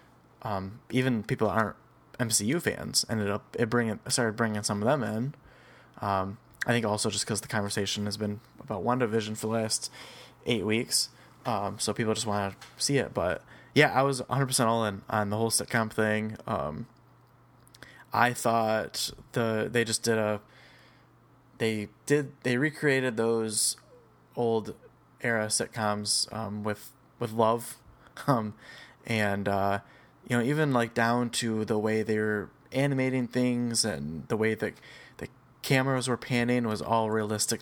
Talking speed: 165 wpm